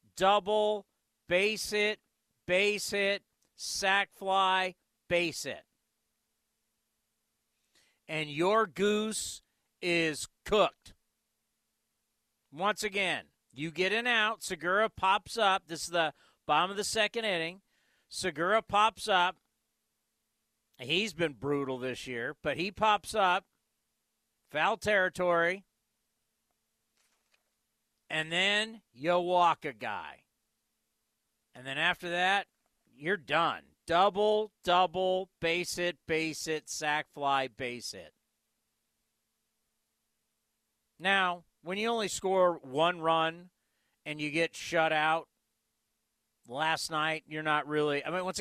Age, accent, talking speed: 50-69, American, 110 wpm